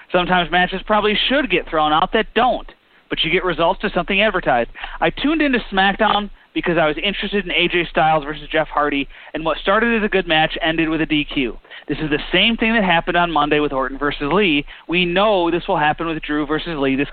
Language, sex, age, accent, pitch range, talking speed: English, male, 30-49, American, 155-200 Hz, 225 wpm